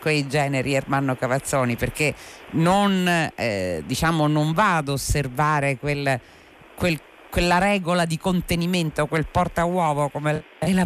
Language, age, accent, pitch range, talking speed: Italian, 50-69, native, 120-170 Hz, 125 wpm